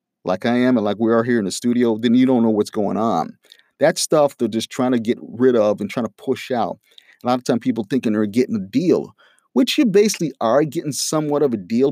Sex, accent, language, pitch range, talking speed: male, American, English, 110-140 Hz, 255 wpm